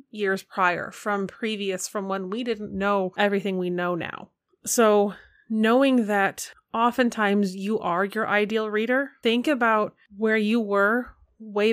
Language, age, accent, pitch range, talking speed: English, 30-49, American, 195-225 Hz, 145 wpm